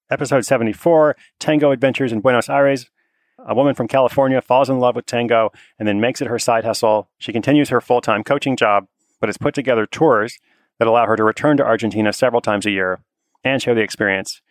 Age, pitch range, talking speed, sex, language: 30-49, 115-140 Hz, 205 wpm, male, English